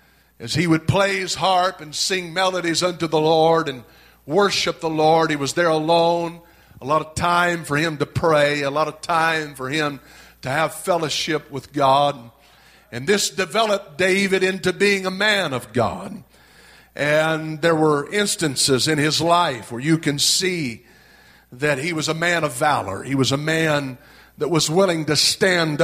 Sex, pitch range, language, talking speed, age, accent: male, 145-180 Hz, English, 175 wpm, 50-69, American